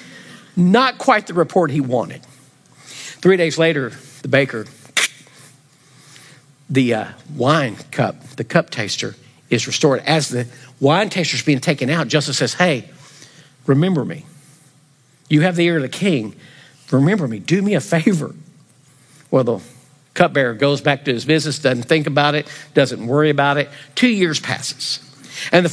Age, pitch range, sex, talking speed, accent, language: 50-69, 135-180 Hz, male, 155 wpm, American, English